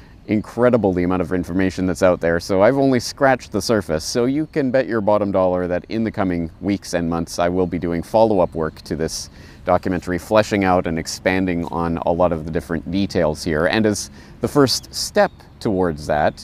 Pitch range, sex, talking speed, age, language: 85-115 Hz, male, 205 wpm, 30-49, English